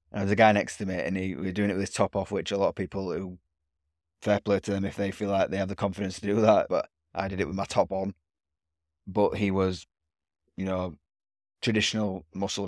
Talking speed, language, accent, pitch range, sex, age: 255 wpm, English, British, 85-100 Hz, male, 20-39